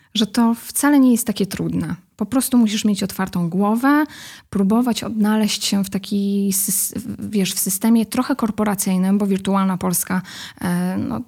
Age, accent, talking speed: 10-29, native, 145 wpm